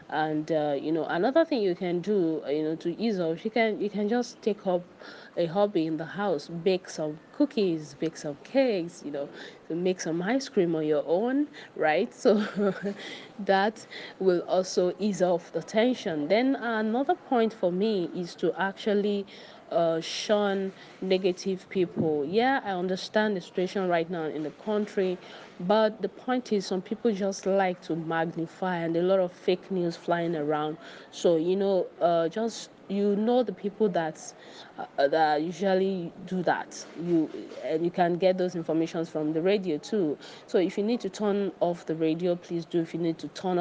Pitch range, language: 165-205 Hz, English